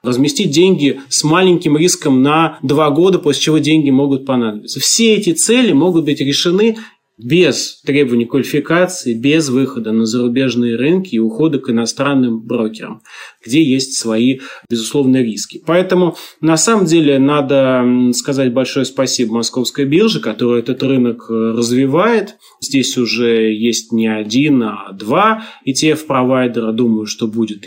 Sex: male